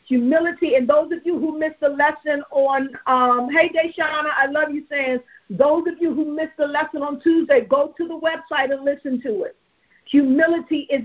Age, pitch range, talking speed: 50-69, 260-325 Hz, 195 wpm